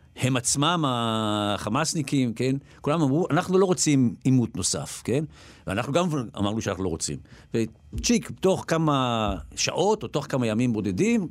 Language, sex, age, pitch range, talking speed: Hebrew, male, 50-69, 100-145 Hz, 145 wpm